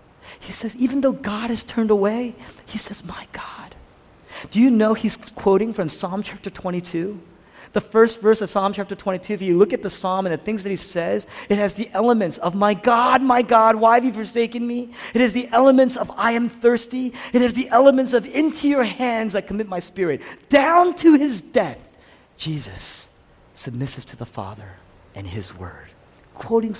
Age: 40-59